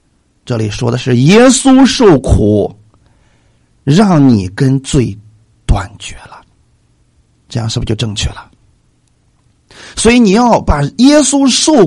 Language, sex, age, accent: Chinese, male, 50-69, native